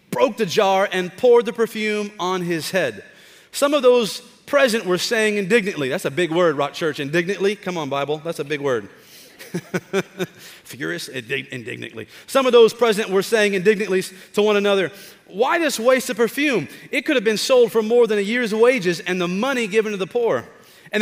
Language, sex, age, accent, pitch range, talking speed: English, male, 30-49, American, 180-230 Hz, 190 wpm